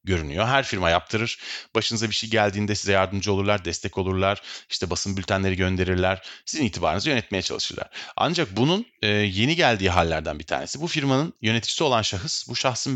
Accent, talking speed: native, 160 wpm